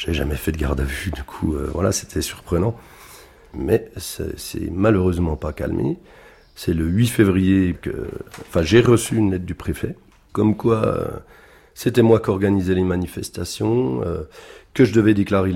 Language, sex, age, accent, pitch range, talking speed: French, male, 40-59, French, 80-100 Hz, 175 wpm